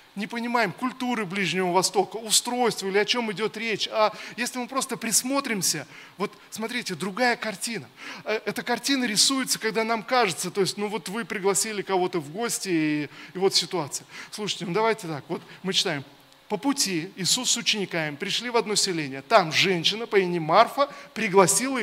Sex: male